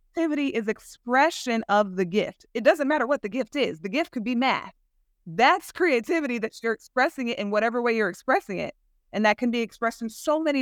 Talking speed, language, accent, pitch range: 215 wpm, English, American, 200-250 Hz